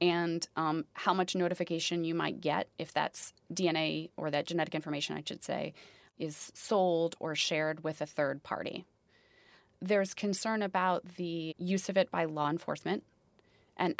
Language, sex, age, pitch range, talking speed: English, female, 30-49, 165-190 Hz, 160 wpm